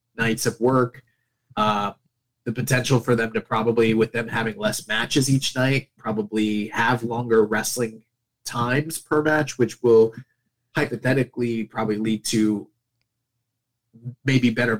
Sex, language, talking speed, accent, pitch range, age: male, English, 130 wpm, American, 115-130 Hz, 20-39